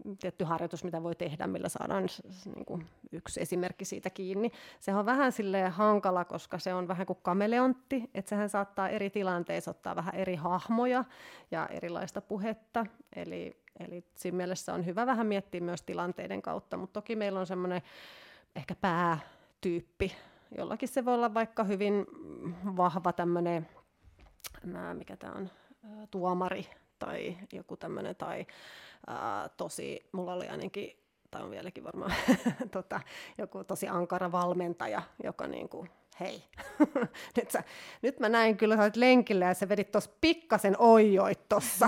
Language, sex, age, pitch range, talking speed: Finnish, female, 30-49, 180-235 Hz, 145 wpm